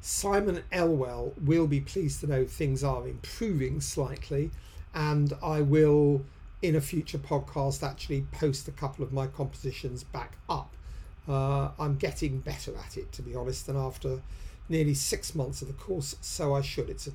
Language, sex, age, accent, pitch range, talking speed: English, male, 50-69, British, 130-160 Hz, 170 wpm